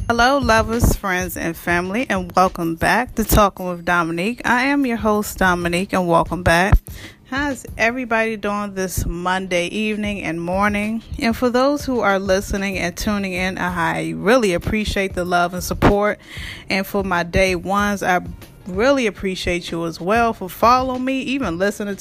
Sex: female